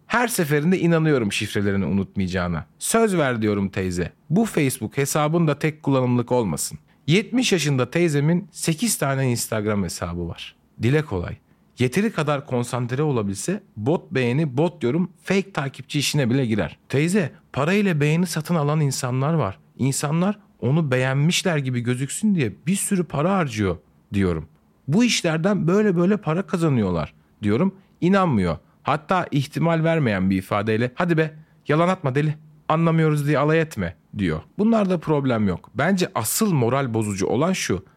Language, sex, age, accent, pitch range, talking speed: Turkish, male, 40-59, native, 110-175 Hz, 140 wpm